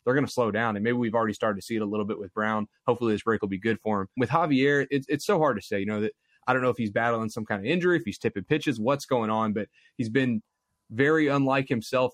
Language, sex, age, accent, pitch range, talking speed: English, male, 20-39, American, 105-125 Hz, 295 wpm